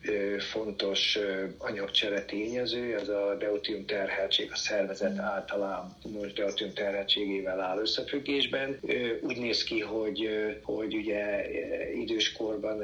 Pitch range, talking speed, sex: 100-130 Hz, 105 wpm, male